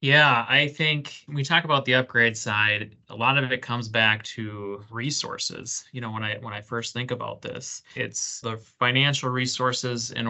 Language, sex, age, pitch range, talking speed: English, male, 20-39, 105-120 Hz, 185 wpm